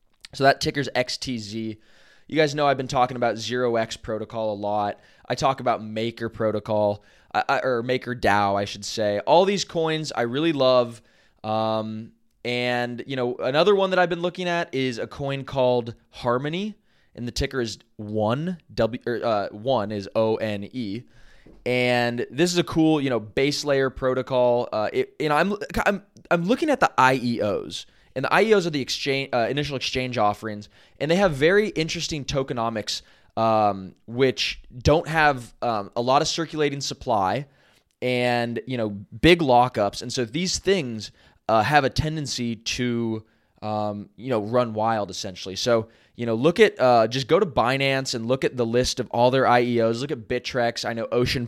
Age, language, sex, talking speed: 20-39, English, male, 180 wpm